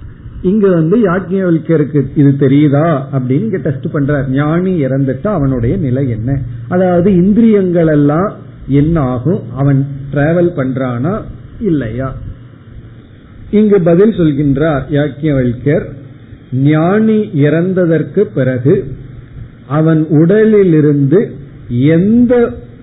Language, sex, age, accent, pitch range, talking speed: Tamil, male, 50-69, native, 130-180 Hz, 75 wpm